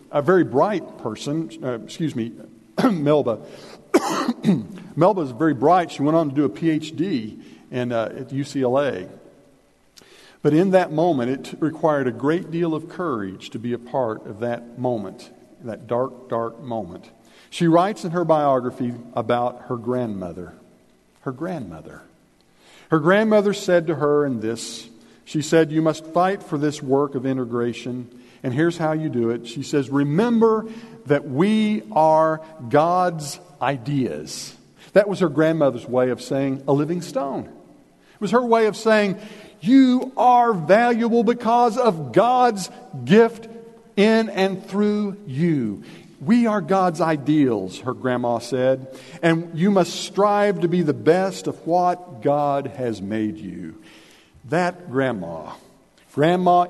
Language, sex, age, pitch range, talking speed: English, male, 50-69, 125-185 Hz, 145 wpm